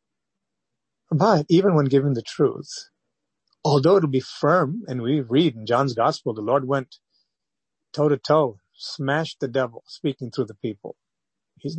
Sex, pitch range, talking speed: male, 135-190 Hz, 150 wpm